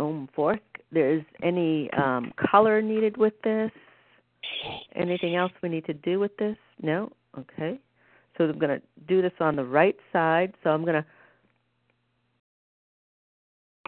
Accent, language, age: American, English, 50-69